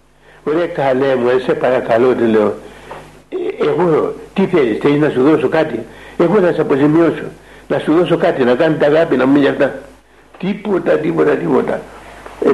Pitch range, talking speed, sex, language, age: 145-215 Hz, 165 wpm, male, Greek, 60-79